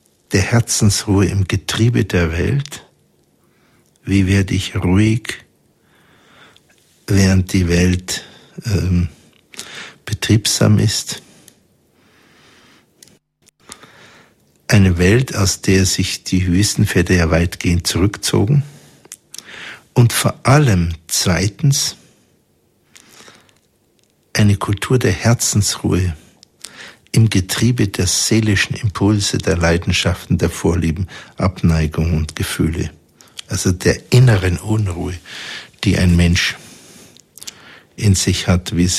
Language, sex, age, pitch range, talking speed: German, male, 60-79, 85-105 Hz, 90 wpm